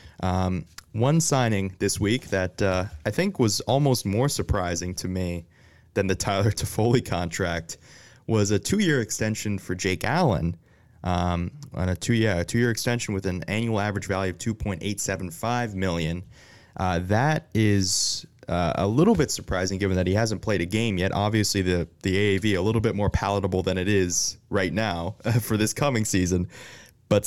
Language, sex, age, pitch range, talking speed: English, male, 20-39, 90-110 Hz, 165 wpm